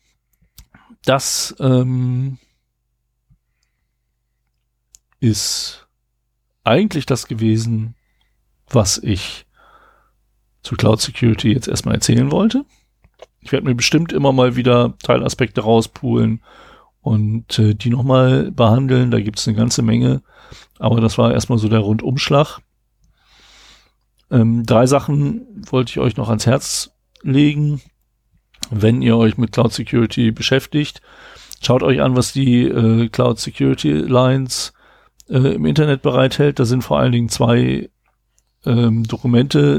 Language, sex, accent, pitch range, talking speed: German, male, German, 115-135 Hz, 120 wpm